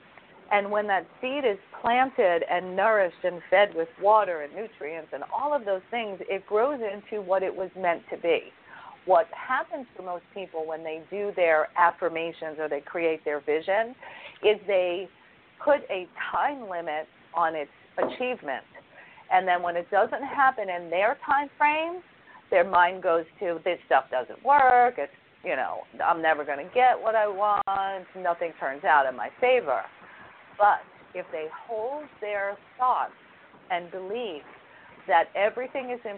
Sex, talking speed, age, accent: female, 165 wpm, 50-69, American